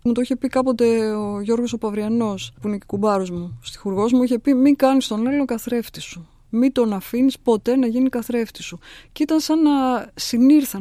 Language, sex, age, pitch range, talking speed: Greek, female, 20-39, 210-260 Hz, 205 wpm